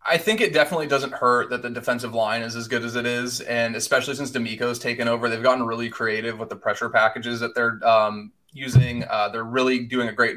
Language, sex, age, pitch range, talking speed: English, male, 20-39, 120-140 Hz, 230 wpm